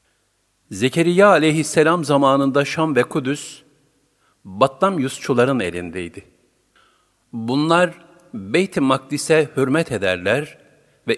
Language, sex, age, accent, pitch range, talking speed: Turkish, male, 50-69, native, 110-155 Hz, 80 wpm